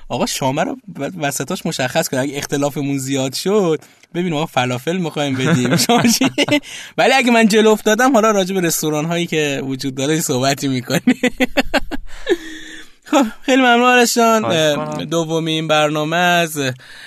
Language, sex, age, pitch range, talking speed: Persian, male, 20-39, 120-145 Hz, 125 wpm